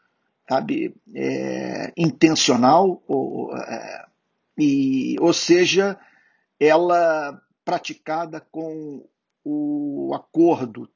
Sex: male